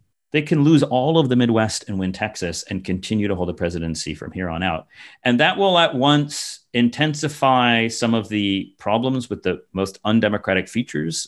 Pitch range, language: 95-130 Hz, English